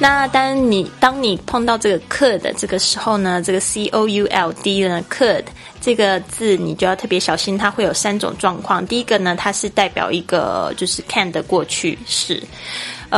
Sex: female